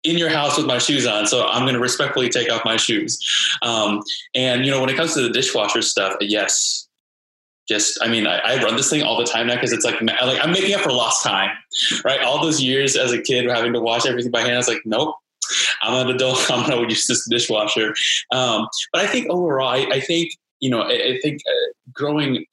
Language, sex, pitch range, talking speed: English, male, 115-135 Hz, 240 wpm